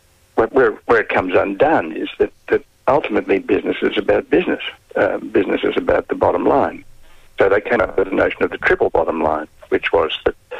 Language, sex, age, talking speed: English, male, 60-79, 200 wpm